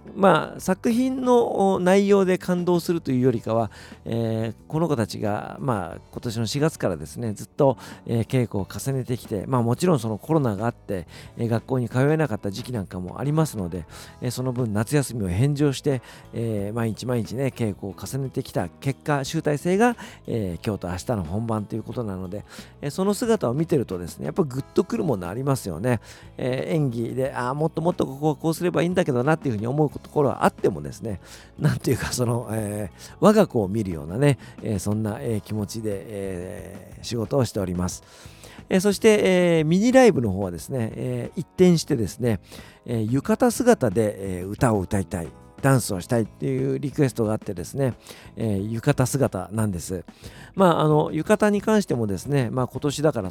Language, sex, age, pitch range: Japanese, male, 50-69, 105-145 Hz